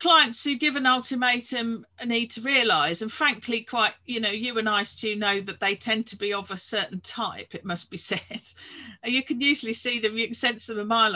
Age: 40-59